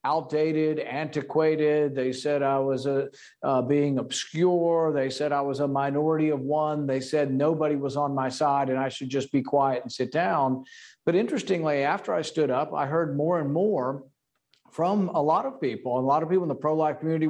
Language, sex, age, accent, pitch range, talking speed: English, male, 50-69, American, 135-155 Hz, 205 wpm